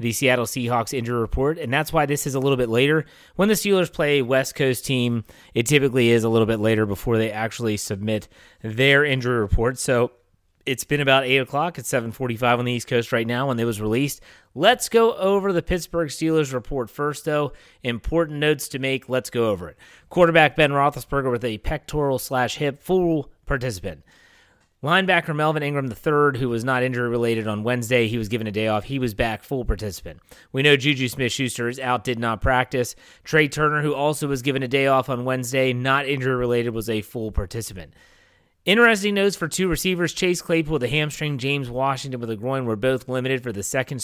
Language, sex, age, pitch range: English, male, 30-49, 120-150 Hz